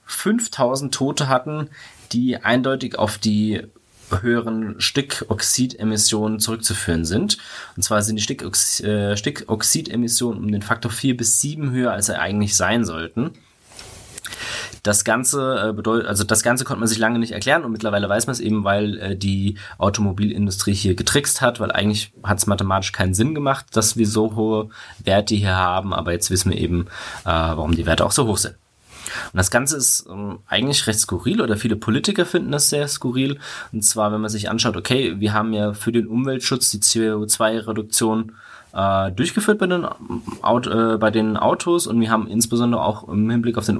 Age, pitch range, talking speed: 20-39, 105-120 Hz, 170 wpm